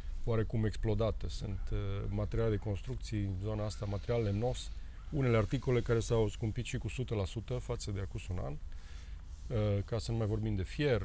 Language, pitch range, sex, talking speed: Romanian, 95-120 Hz, male, 180 wpm